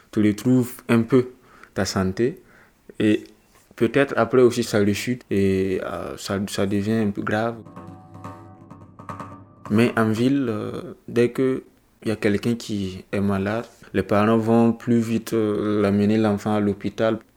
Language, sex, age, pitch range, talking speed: French, male, 20-39, 100-115 Hz, 150 wpm